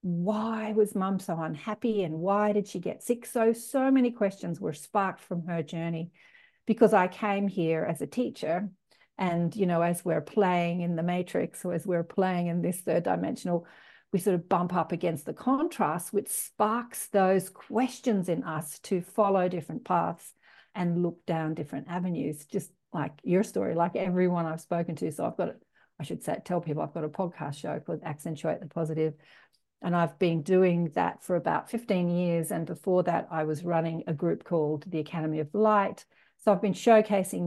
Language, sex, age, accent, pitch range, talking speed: English, female, 50-69, Australian, 165-200 Hz, 190 wpm